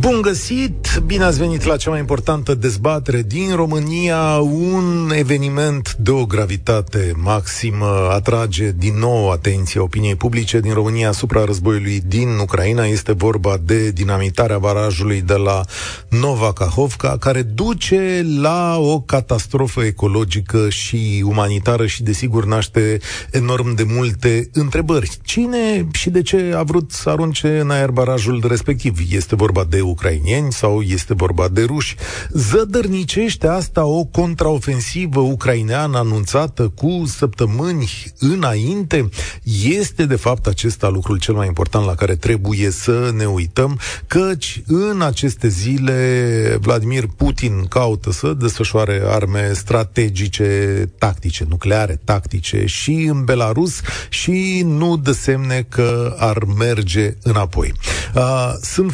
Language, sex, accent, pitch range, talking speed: Romanian, male, native, 105-145 Hz, 125 wpm